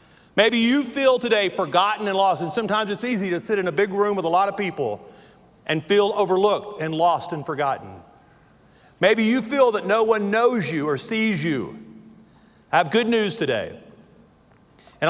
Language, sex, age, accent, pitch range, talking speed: English, male, 40-59, American, 170-205 Hz, 185 wpm